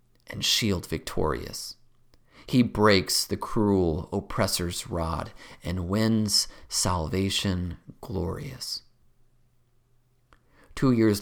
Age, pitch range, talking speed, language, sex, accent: 30-49, 90-120 Hz, 80 wpm, English, male, American